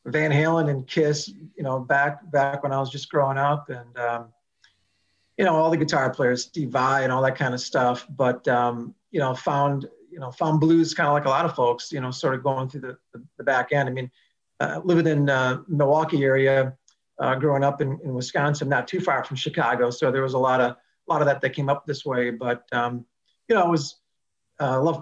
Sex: male